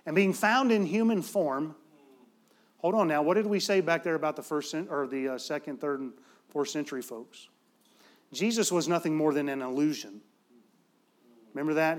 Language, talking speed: English, 165 wpm